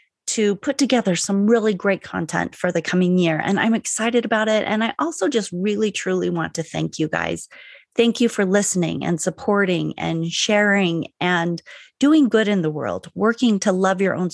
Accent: American